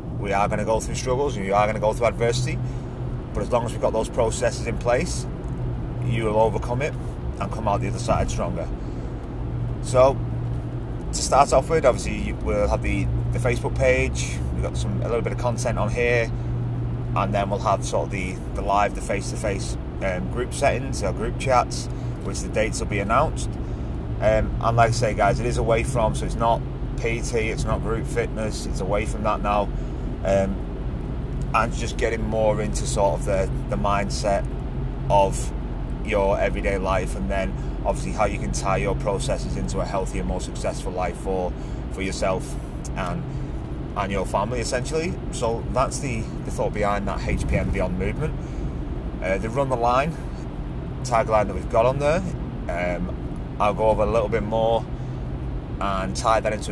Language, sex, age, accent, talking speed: English, male, 30-49, British, 185 wpm